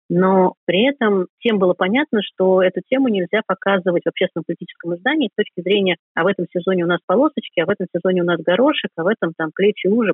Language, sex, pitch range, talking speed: Russian, female, 175-220 Hz, 225 wpm